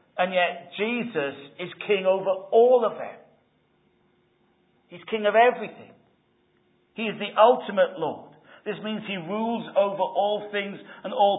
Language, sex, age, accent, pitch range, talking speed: English, male, 50-69, British, 145-205 Hz, 140 wpm